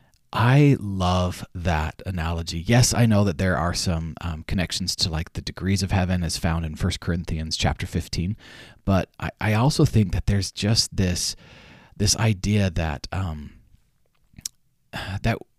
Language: English